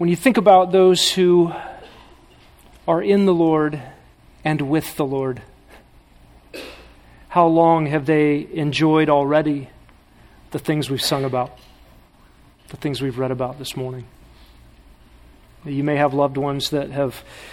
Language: English